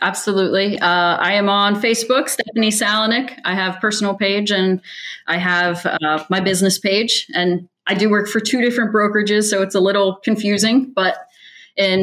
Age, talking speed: 30-49, 170 wpm